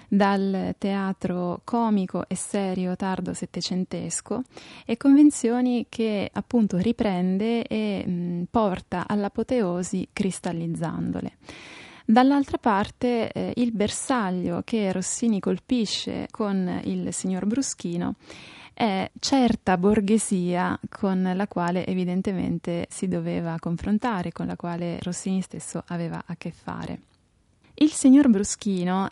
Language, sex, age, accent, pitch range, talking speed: Italian, female, 20-39, native, 180-225 Hz, 105 wpm